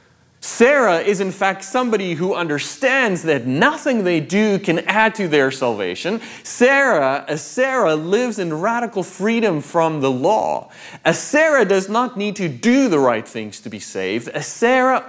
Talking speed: 165 wpm